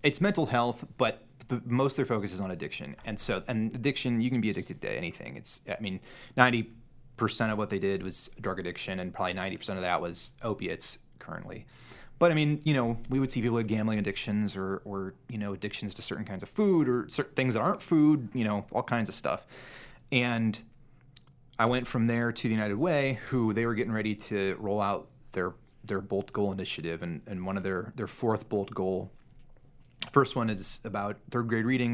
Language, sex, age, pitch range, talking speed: English, male, 30-49, 100-130 Hz, 215 wpm